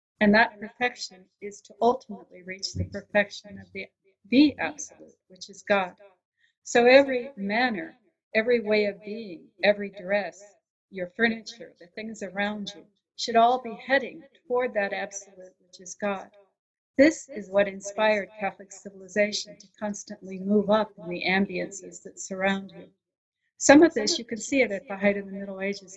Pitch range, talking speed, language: 190-215 Hz, 165 wpm, English